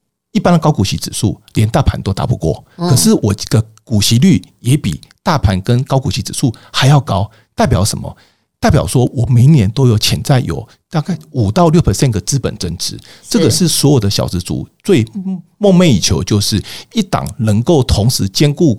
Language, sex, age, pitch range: Chinese, male, 50-69, 105-145 Hz